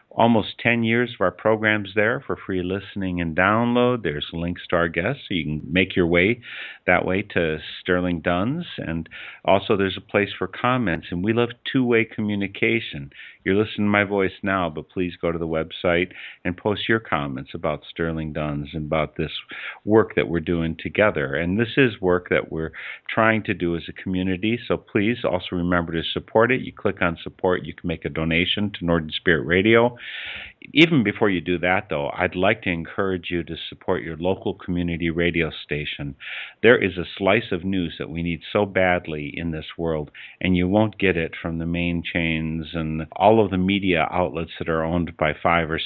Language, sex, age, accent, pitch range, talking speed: English, male, 50-69, American, 80-95 Hz, 200 wpm